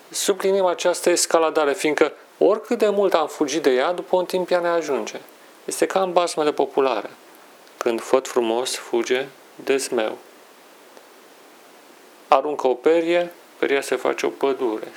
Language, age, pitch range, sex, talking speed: Romanian, 40-59, 130-180 Hz, male, 145 wpm